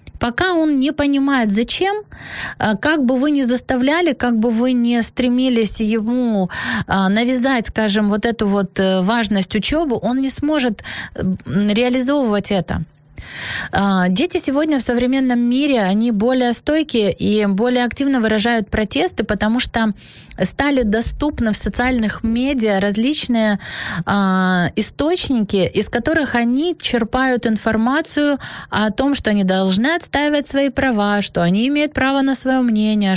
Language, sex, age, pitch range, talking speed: Ukrainian, female, 20-39, 205-270 Hz, 130 wpm